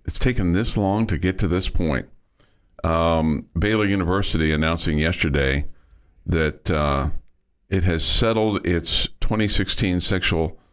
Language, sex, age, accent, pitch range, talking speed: English, male, 50-69, American, 75-90 Hz, 125 wpm